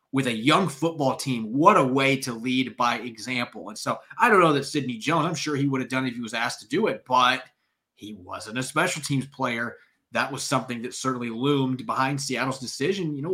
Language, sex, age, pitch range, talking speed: English, male, 30-49, 120-160 Hz, 235 wpm